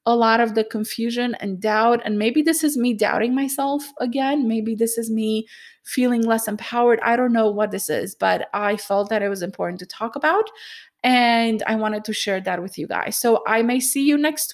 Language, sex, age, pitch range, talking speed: English, female, 20-39, 215-275 Hz, 220 wpm